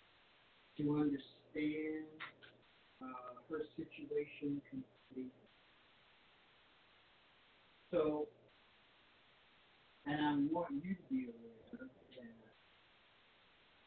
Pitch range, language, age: 140-210 Hz, English, 50-69